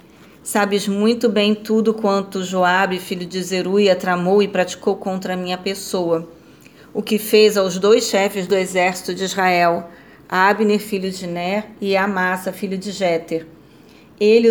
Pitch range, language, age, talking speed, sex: 180-205 Hz, Portuguese, 40-59, 150 wpm, female